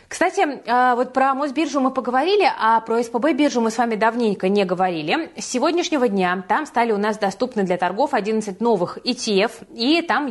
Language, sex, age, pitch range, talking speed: Russian, female, 20-39, 185-250 Hz, 175 wpm